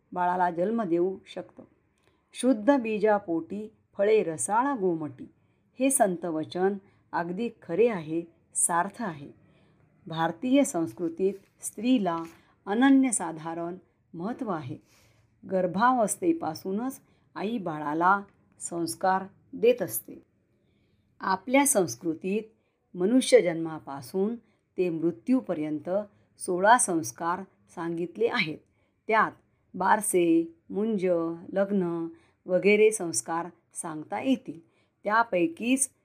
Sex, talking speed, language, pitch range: female, 80 wpm, Marathi, 170-225 Hz